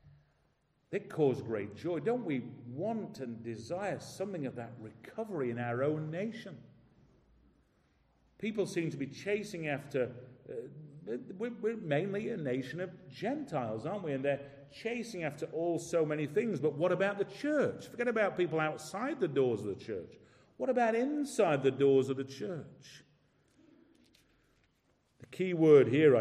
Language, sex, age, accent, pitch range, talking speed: English, male, 50-69, British, 110-165 Hz, 155 wpm